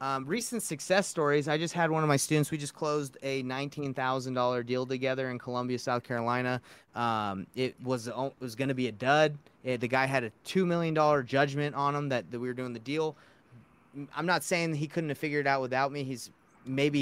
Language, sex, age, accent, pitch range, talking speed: English, male, 30-49, American, 125-145 Hz, 215 wpm